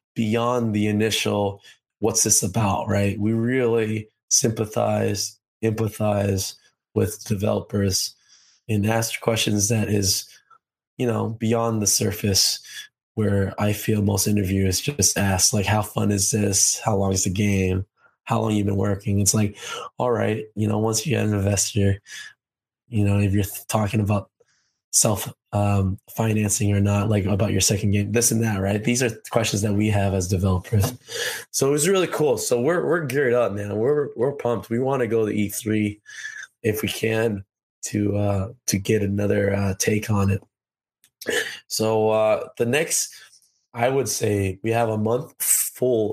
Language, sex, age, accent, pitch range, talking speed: English, male, 20-39, American, 100-115 Hz, 170 wpm